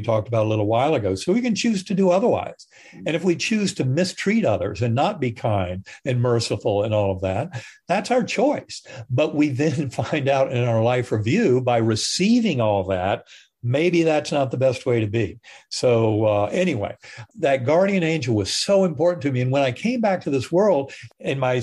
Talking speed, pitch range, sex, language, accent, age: 210 wpm, 115-160 Hz, male, English, American, 50-69